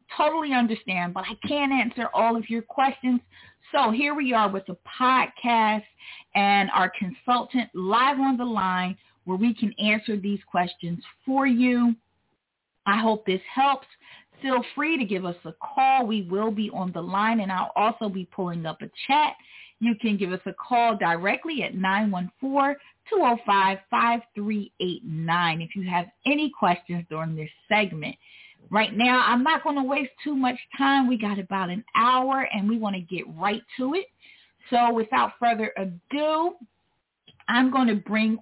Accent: American